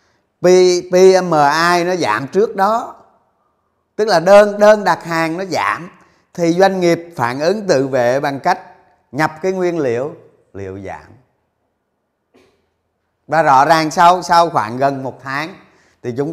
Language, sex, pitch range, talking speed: Vietnamese, male, 105-165 Hz, 145 wpm